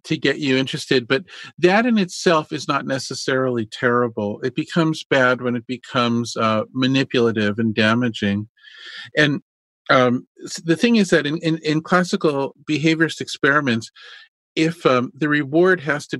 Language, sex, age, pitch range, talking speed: English, male, 50-69, 120-155 Hz, 150 wpm